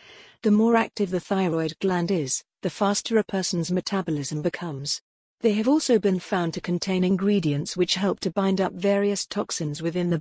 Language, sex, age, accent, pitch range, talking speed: English, female, 40-59, British, 170-205 Hz, 175 wpm